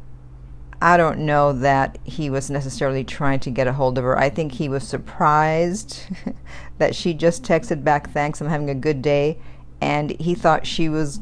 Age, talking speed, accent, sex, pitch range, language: 50-69, 185 wpm, American, female, 135-175 Hz, English